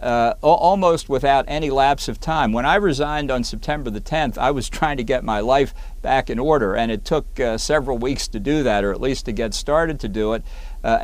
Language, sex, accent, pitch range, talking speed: English, male, American, 115-150 Hz, 235 wpm